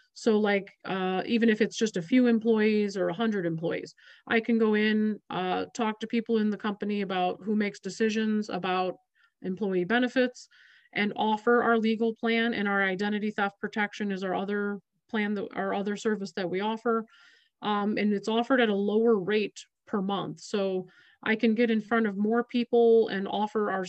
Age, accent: 30-49, American